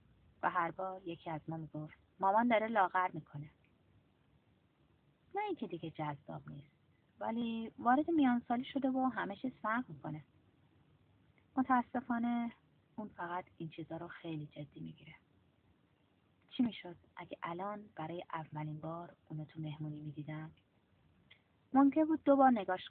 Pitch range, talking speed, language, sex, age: 150-225 Hz, 135 wpm, Persian, female, 30-49